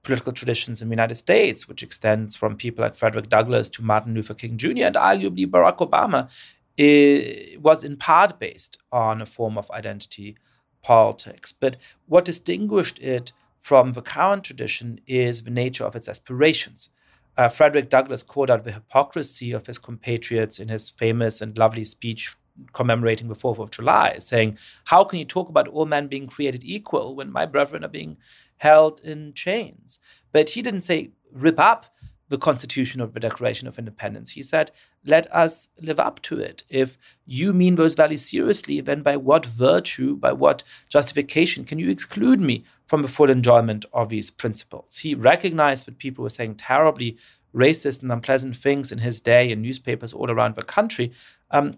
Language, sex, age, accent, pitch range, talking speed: English, male, 40-59, German, 115-150 Hz, 175 wpm